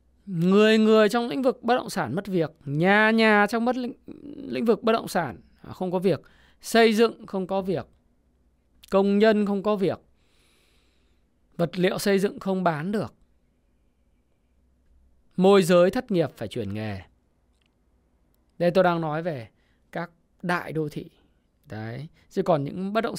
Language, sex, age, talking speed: Vietnamese, male, 20-39, 160 wpm